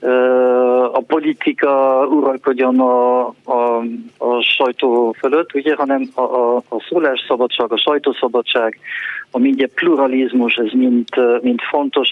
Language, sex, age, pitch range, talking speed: Hungarian, male, 50-69, 120-140 Hz, 115 wpm